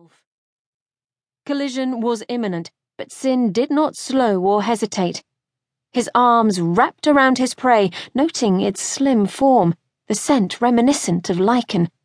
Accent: British